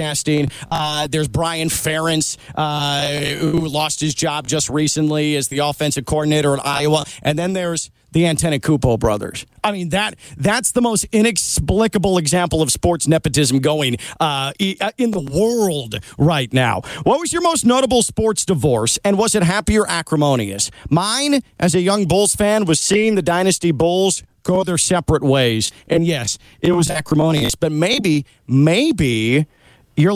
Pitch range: 140-185 Hz